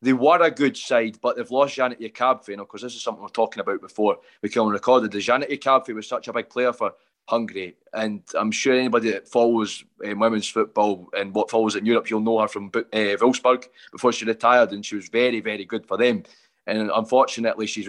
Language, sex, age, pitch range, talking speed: English, male, 20-39, 110-125 Hz, 230 wpm